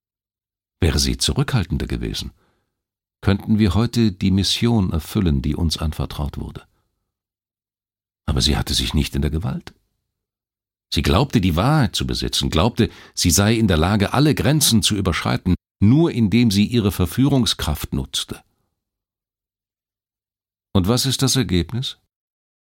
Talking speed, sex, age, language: 130 wpm, male, 50-69, German